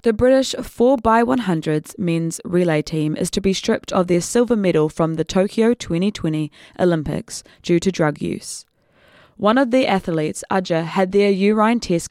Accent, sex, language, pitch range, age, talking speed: Australian, female, English, 165-215 Hz, 20-39, 160 wpm